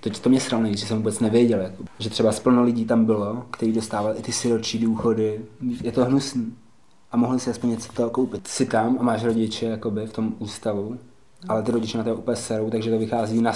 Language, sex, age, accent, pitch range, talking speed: Czech, male, 20-39, native, 110-125 Hz, 225 wpm